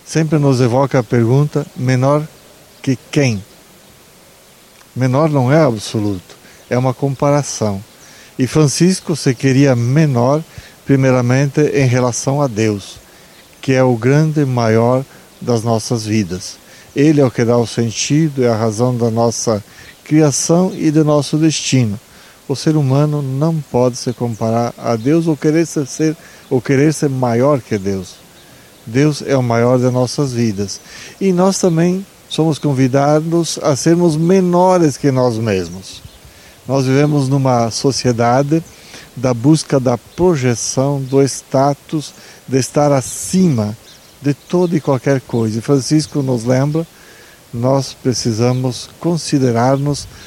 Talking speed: 135 wpm